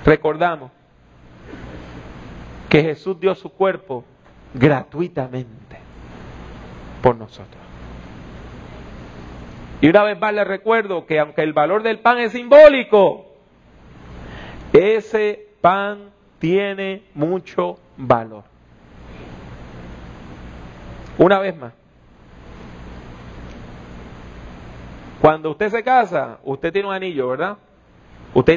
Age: 40-59